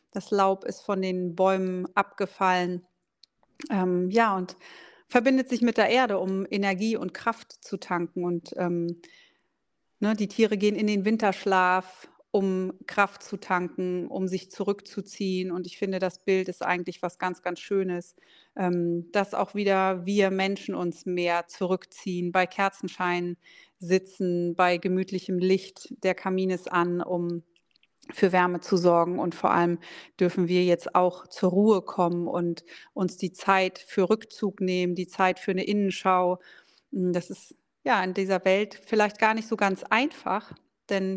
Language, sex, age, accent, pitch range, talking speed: German, female, 30-49, German, 180-210 Hz, 155 wpm